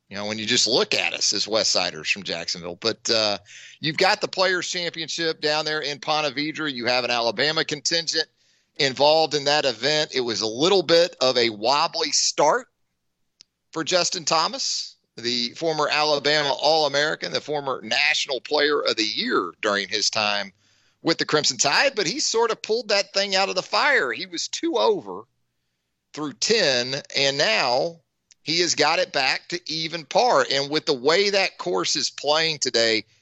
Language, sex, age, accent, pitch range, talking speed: English, male, 40-59, American, 125-175 Hz, 180 wpm